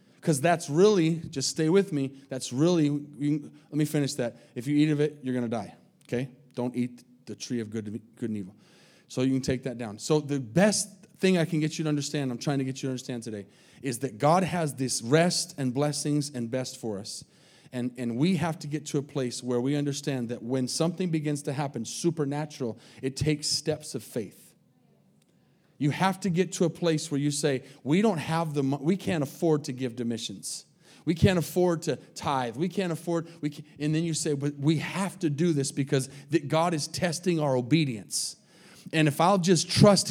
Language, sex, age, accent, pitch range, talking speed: English, male, 30-49, American, 135-170 Hz, 215 wpm